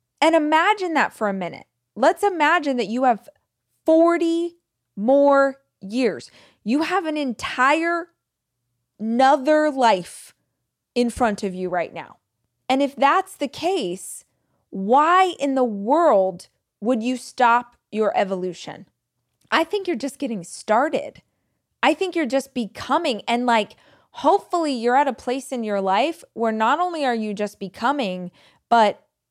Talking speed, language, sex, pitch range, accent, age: 140 wpm, English, female, 215-305 Hz, American, 20-39